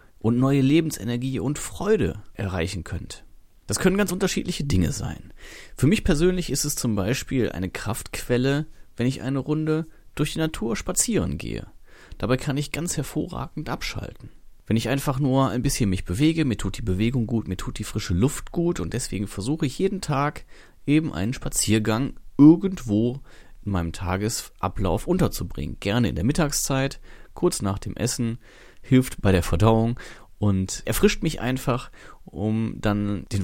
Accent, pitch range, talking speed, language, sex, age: German, 100-140 Hz, 160 wpm, German, male, 30-49